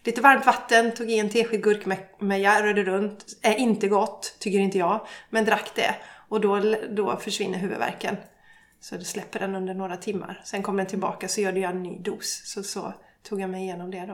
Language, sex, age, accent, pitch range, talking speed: Swedish, female, 30-49, native, 205-245 Hz, 215 wpm